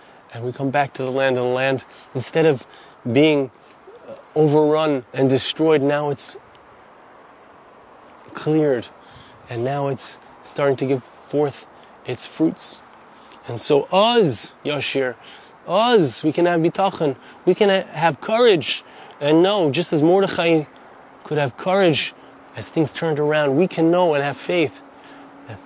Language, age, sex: English, 30-49, male